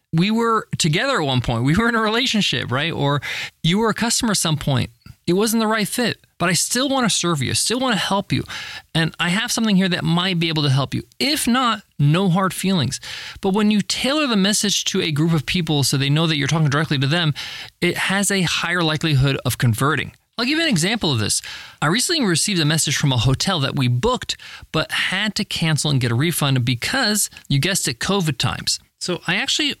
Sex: male